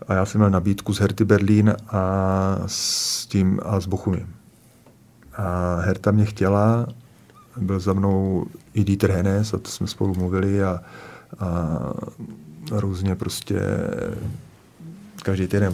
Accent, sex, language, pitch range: native, male, Czech, 95-105 Hz